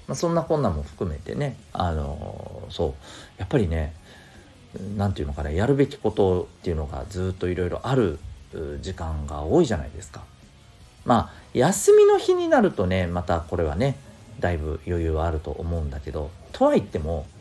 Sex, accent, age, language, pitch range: male, native, 40-59, Japanese, 80-105 Hz